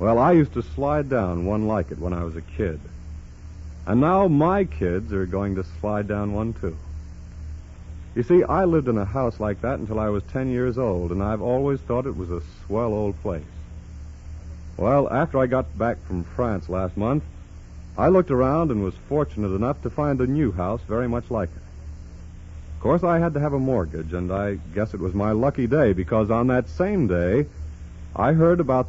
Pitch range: 80-130 Hz